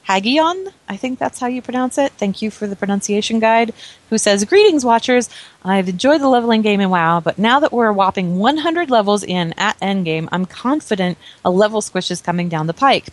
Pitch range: 180-225 Hz